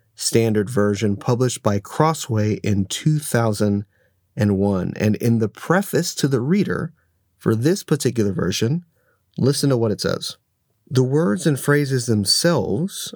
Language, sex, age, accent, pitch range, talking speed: English, male, 30-49, American, 105-130 Hz, 130 wpm